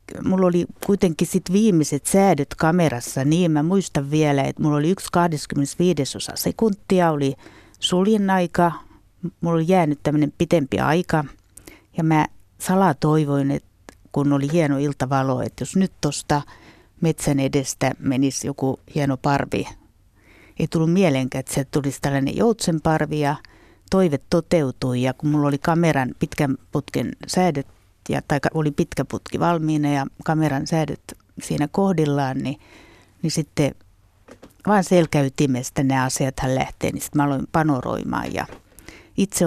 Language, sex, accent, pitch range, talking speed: Finnish, female, native, 135-170 Hz, 135 wpm